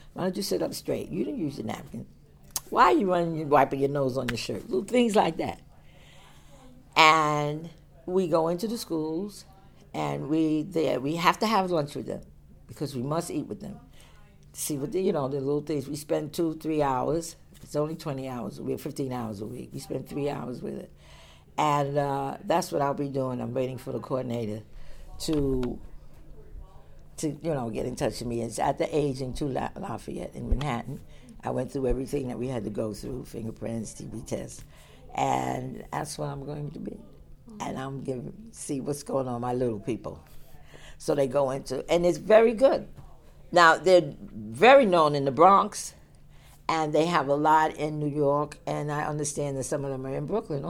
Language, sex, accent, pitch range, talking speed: English, female, American, 130-160 Hz, 200 wpm